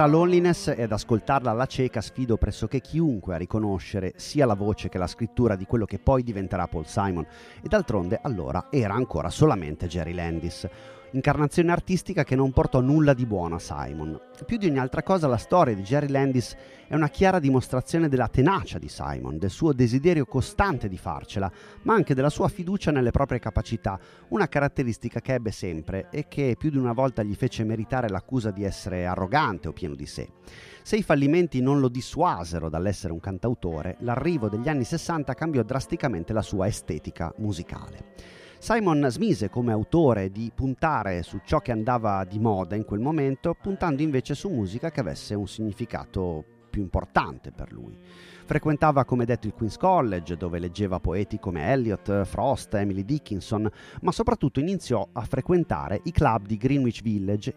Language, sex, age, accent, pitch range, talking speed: Italian, male, 30-49, native, 95-140 Hz, 175 wpm